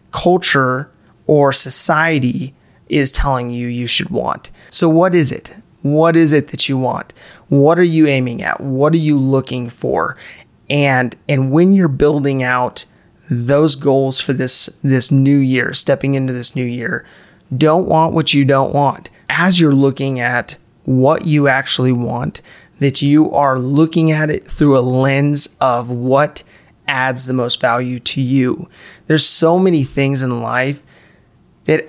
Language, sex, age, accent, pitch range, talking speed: English, male, 30-49, American, 125-150 Hz, 160 wpm